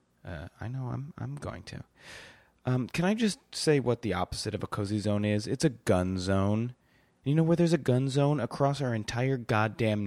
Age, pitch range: 30-49, 90-125 Hz